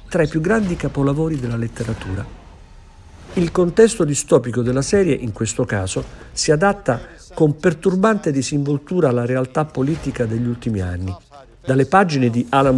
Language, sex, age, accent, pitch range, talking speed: Italian, male, 50-69, native, 115-160 Hz, 140 wpm